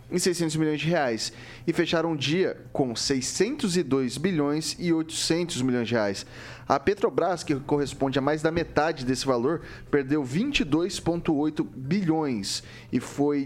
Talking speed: 145 wpm